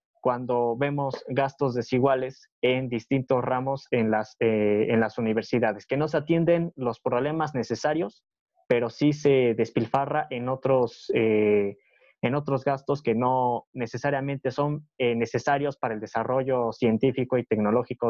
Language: Spanish